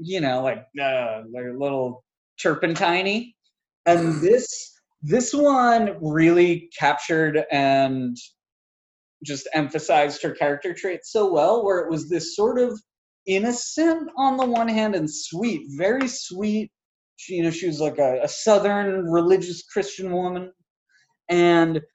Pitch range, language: 130-180 Hz, English